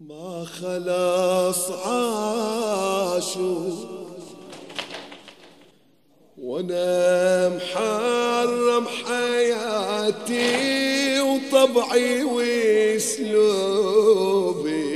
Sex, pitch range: male, 185-260 Hz